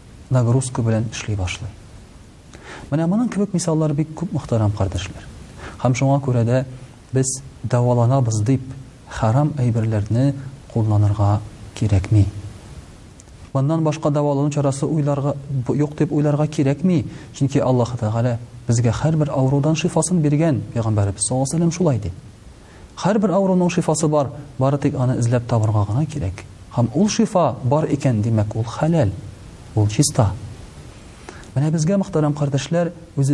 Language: Russian